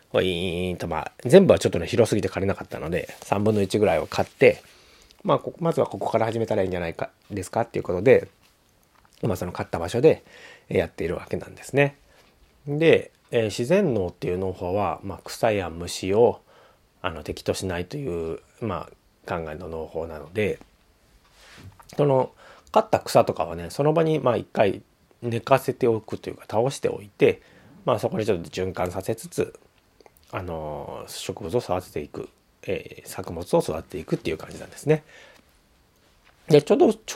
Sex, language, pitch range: male, Japanese, 90-135 Hz